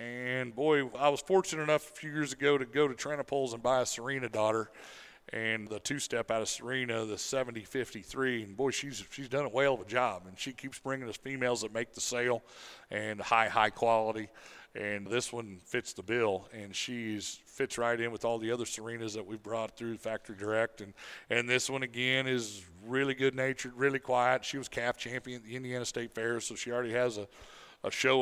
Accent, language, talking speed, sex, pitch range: American, English, 210 wpm, male, 115-135 Hz